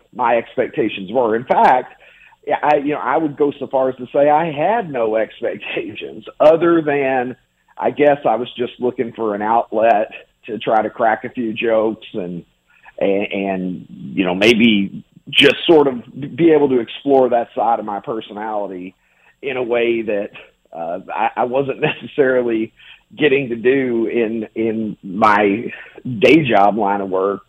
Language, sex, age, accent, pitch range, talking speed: English, male, 50-69, American, 110-150 Hz, 165 wpm